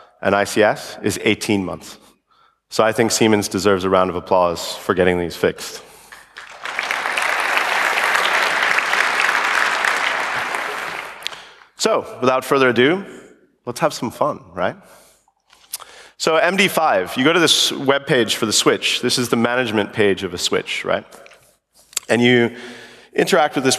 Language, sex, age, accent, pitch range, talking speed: English, male, 30-49, American, 105-135 Hz, 130 wpm